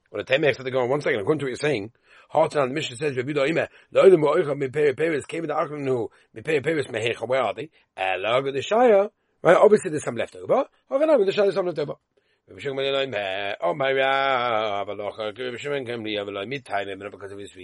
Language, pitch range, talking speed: English, 110-155 Hz, 65 wpm